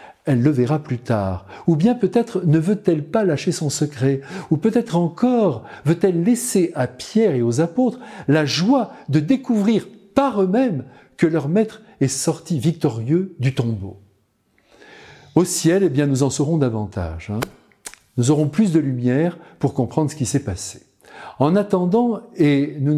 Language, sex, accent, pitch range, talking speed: French, male, French, 120-175 Hz, 160 wpm